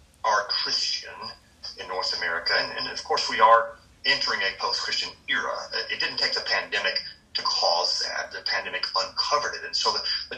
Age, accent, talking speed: 40-59, American, 180 wpm